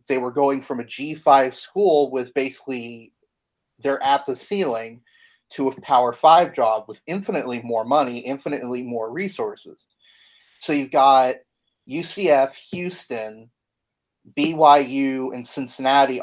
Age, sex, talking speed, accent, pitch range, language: 30-49, male, 125 wpm, American, 120-150 Hz, English